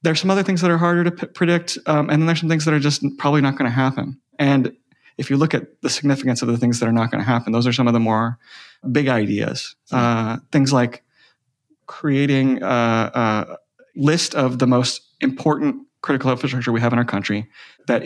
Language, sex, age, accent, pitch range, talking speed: English, male, 30-49, American, 120-150 Hz, 225 wpm